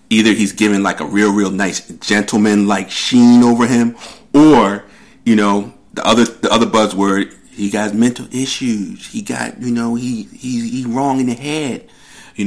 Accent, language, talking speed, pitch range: American, English, 180 wpm, 100-125 Hz